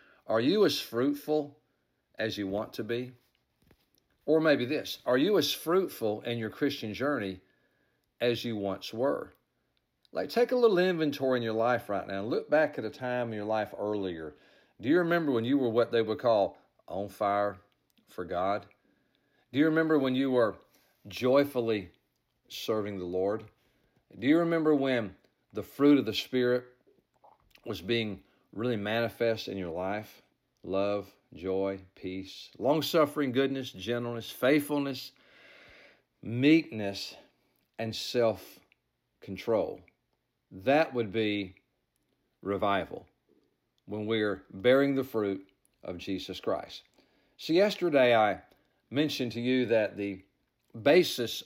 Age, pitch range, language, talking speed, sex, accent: 40-59, 100-130 Hz, English, 135 wpm, male, American